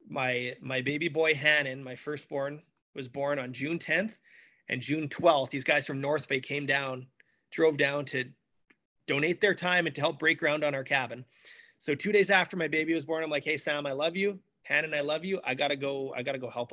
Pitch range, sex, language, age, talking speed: 140-175 Hz, male, English, 30-49, 230 wpm